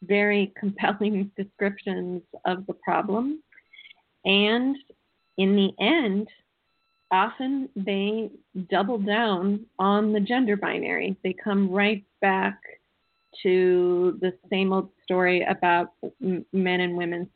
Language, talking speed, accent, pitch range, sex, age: English, 105 wpm, American, 180-210 Hz, female, 40-59